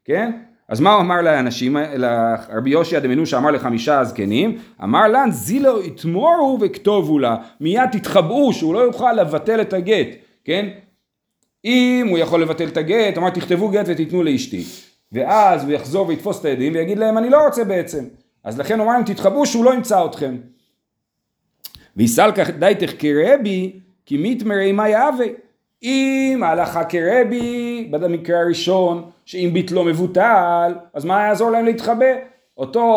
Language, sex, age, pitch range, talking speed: Hebrew, male, 40-59, 165-230 Hz, 150 wpm